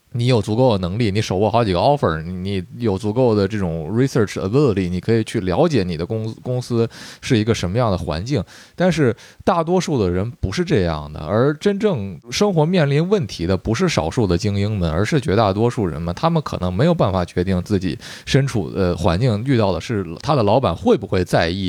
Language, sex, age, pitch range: Chinese, male, 20-39, 95-150 Hz